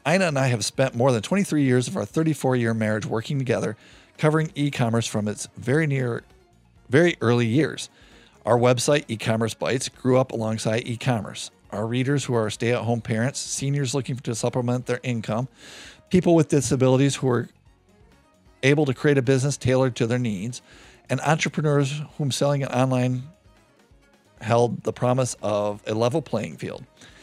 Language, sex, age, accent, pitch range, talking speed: English, male, 40-59, American, 115-145 Hz, 160 wpm